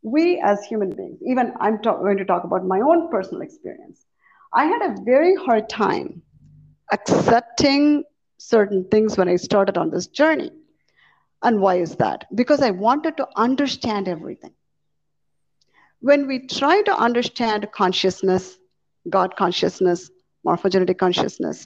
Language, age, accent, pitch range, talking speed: English, 50-69, Indian, 190-275 Hz, 140 wpm